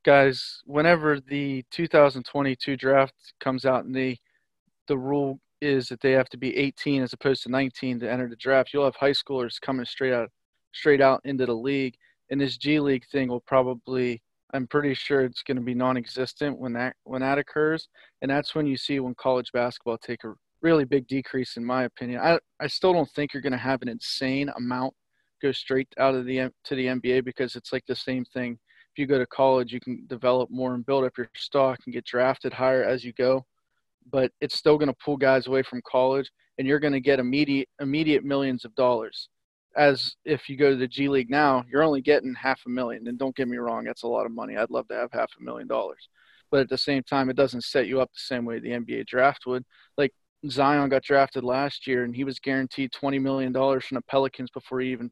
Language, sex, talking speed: English, male, 230 wpm